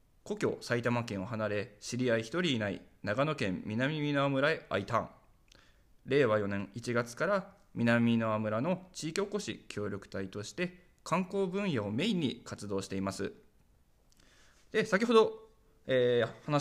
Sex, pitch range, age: male, 100-150 Hz, 20-39